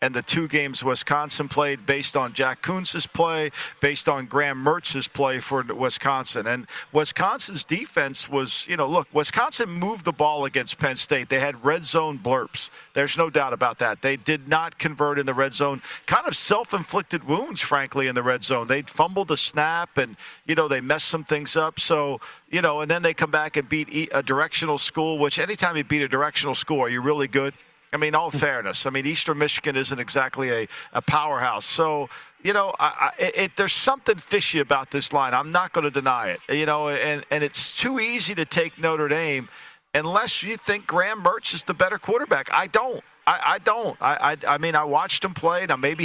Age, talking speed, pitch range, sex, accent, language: 50-69, 205 wpm, 140-170 Hz, male, American, English